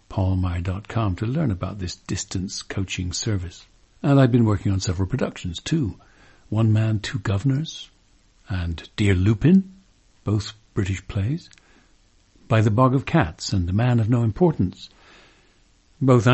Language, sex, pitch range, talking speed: English, male, 95-120 Hz, 140 wpm